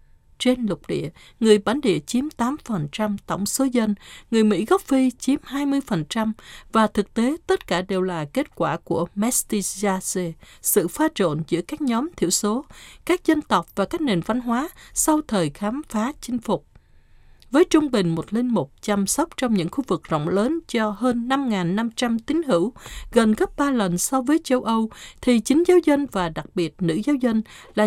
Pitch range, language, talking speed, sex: 190-255 Hz, Vietnamese, 190 wpm, female